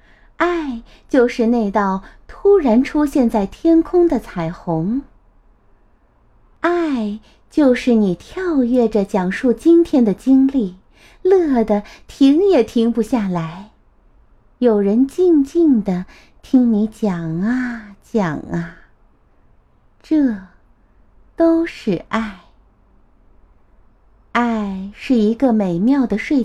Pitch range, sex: 200-295 Hz, female